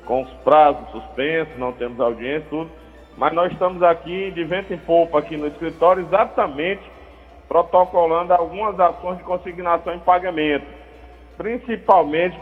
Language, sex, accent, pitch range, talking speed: Portuguese, male, Brazilian, 155-195 Hz, 135 wpm